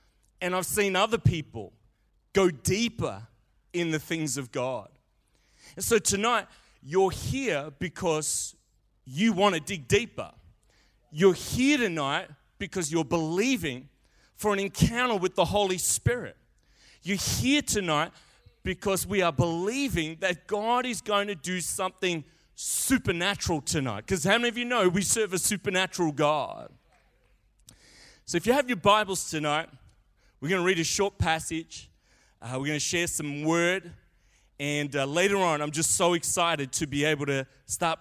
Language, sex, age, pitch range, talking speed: French, male, 30-49, 135-185 Hz, 155 wpm